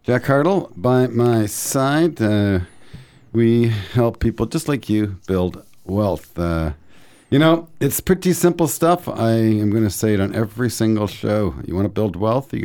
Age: 50-69